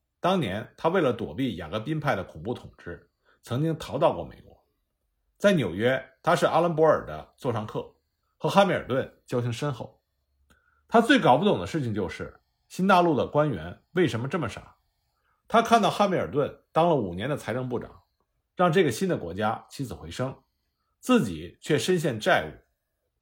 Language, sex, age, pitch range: Chinese, male, 50-69, 105-180 Hz